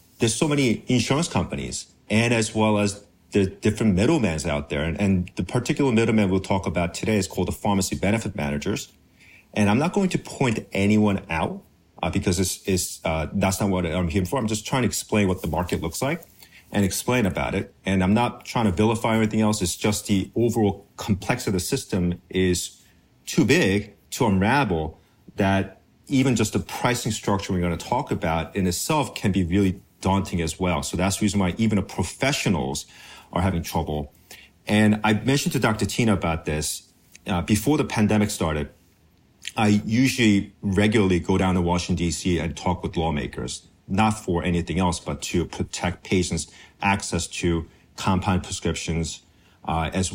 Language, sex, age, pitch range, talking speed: English, male, 40-59, 85-105 Hz, 180 wpm